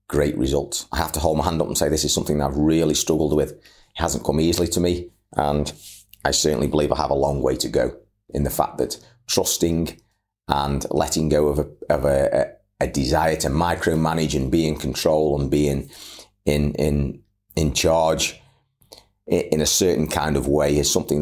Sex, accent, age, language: male, British, 30-49, English